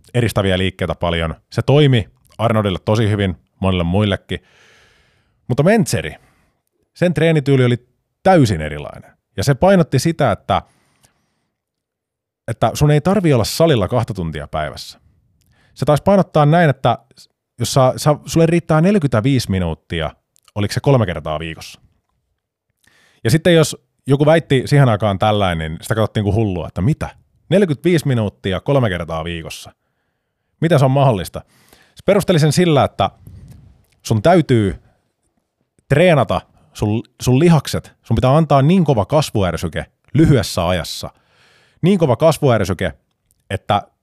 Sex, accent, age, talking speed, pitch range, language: male, native, 30-49, 125 wpm, 100-150 Hz, Finnish